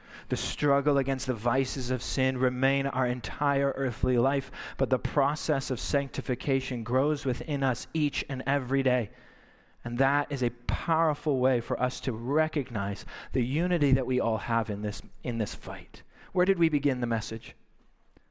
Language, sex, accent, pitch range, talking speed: English, male, American, 120-145 Hz, 165 wpm